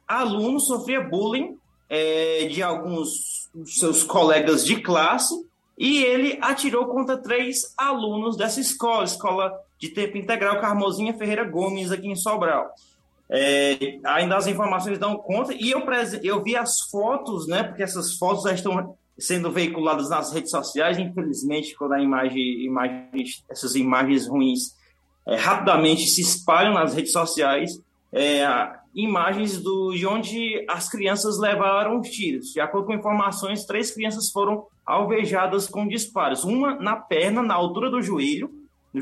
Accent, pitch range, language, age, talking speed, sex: Brazilian, 170-240 Hz, Portuguese, 20-39, 150 wpm, male